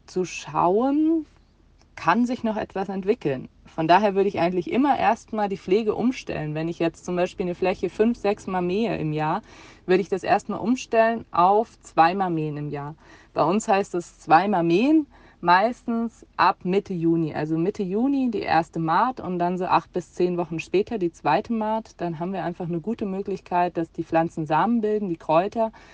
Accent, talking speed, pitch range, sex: German, 190 wpm, 160-195 Hz, female